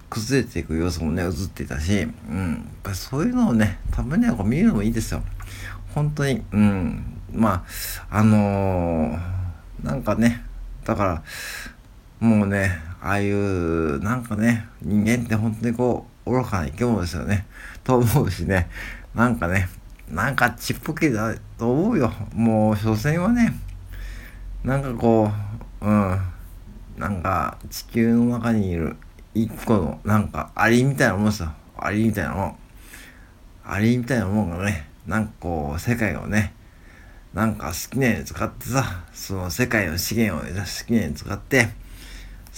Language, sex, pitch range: Japanese, male, 90-115 Hz